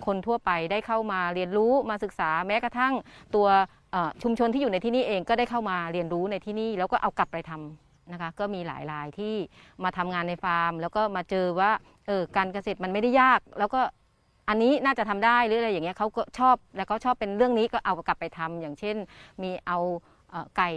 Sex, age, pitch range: female, 30-49, 175-220 Hz